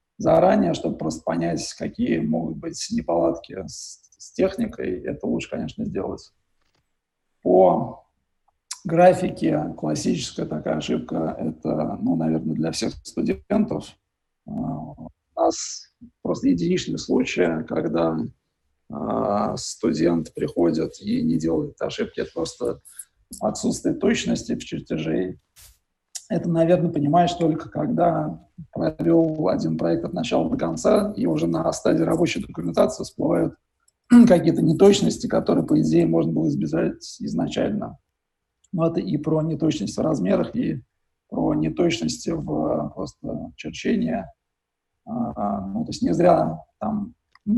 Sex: male